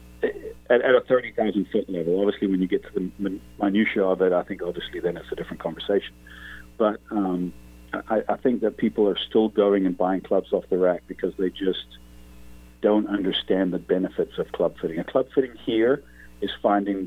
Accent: American